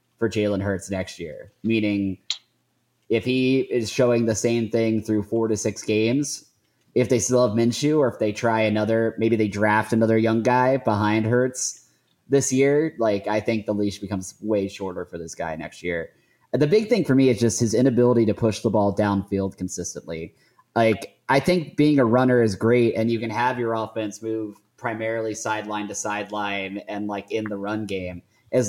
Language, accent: English, American